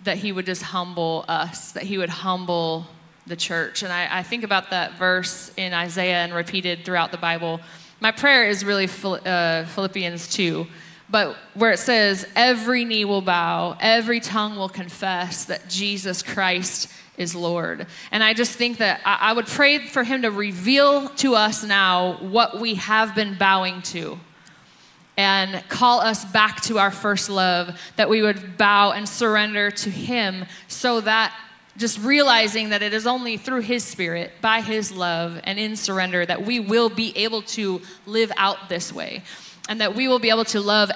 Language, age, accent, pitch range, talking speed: English, 20-39, American, 185-225 Hz, 175 wpm